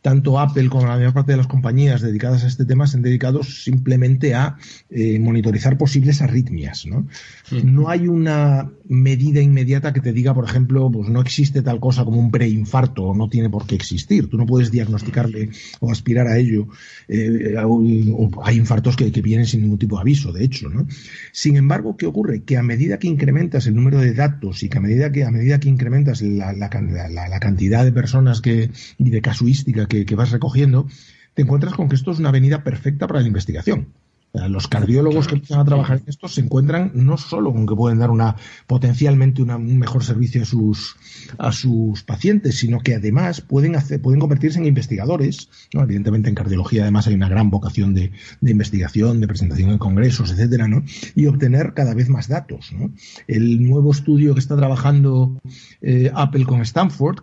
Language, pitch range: Spanish, 110-135 Hz